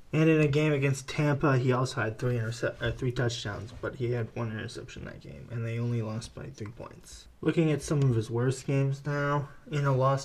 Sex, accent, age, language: male, American, 20-39, English